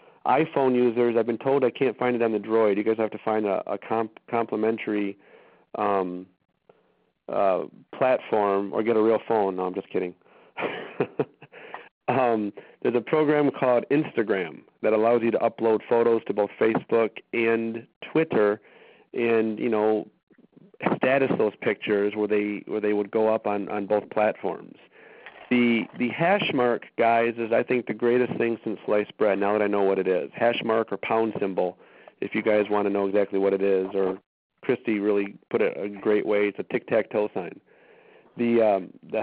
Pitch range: 105-120 Hz